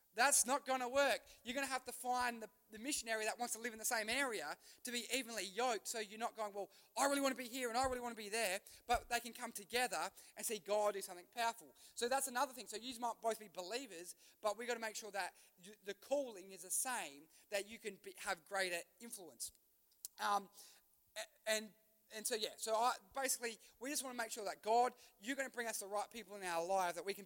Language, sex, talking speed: English, male, 255 wpm